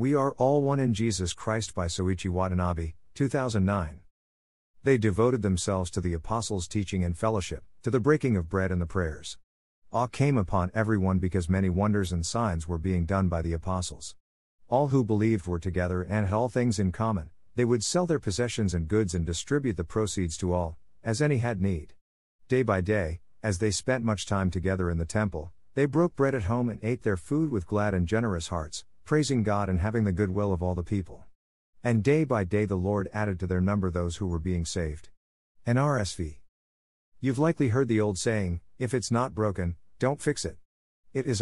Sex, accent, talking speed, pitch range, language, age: male, American, 200 wpm, 90-120 Hz, English, 50-69